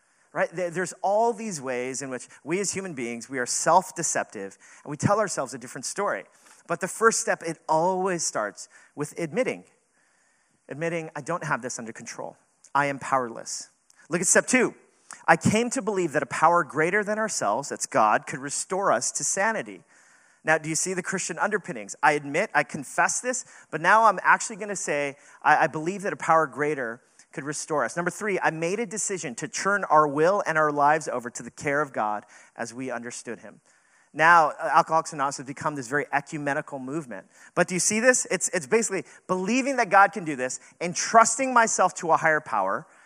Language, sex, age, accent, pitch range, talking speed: English, male, 40-59, American, 150-200 Hz, 195 wpm